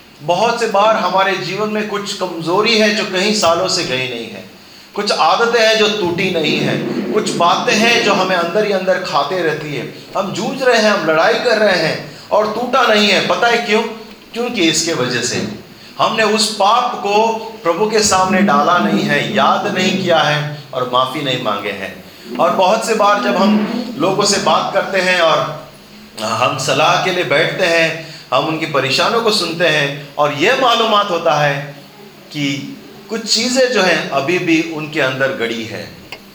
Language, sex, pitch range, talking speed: Hindi, male, 155-210 Hz, 185 wpm